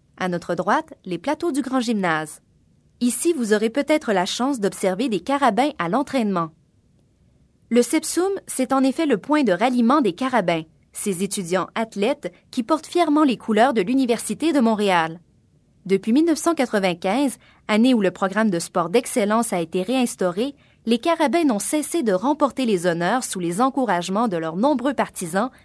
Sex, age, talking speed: female, 20-39, 160 wpm